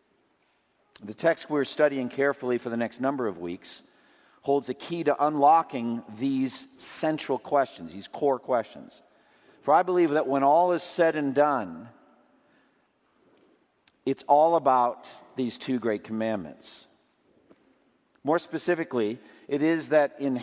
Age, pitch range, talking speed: 50-69, 130-165 Hz, 130 wpm